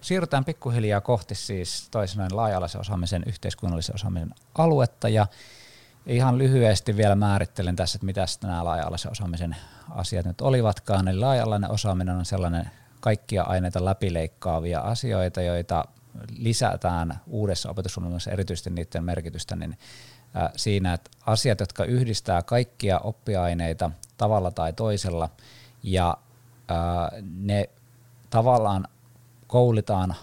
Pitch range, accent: 85-115 Hz, native